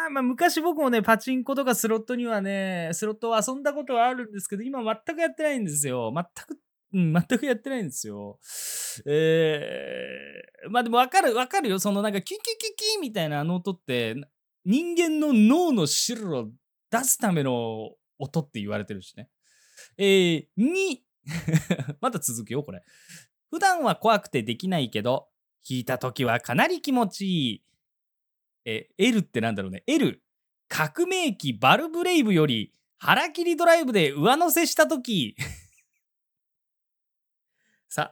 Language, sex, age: Japanese, male, 20-39